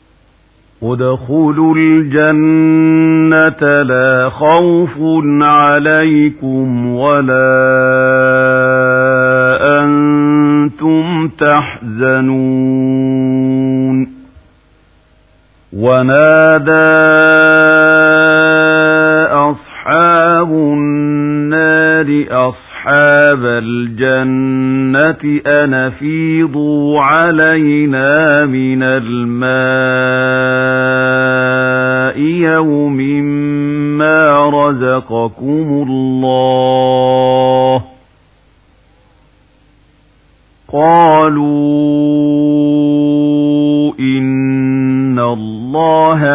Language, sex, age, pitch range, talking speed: Arabic, male, 50-69, 130-155 Hz, 30 wpm